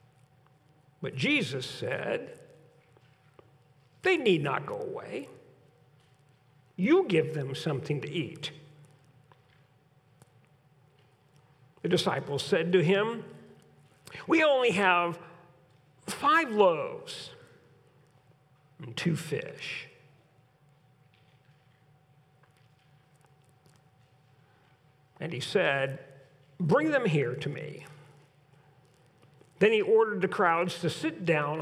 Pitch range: 145-185 Hz